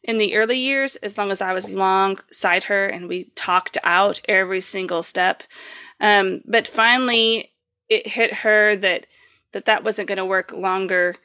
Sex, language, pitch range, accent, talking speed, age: female, English, 190-235 Hz, American, 170 wpm, 30-49